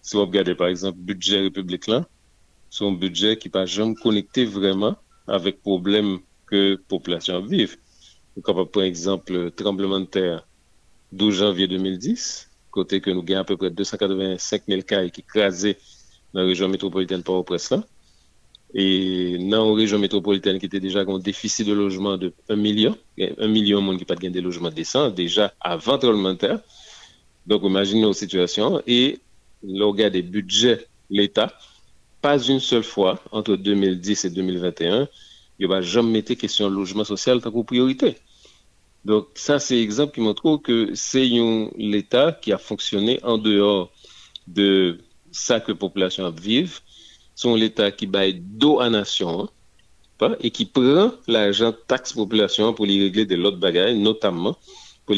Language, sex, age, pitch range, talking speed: French, male, 40-59, 95-110 Hz, 170 wpm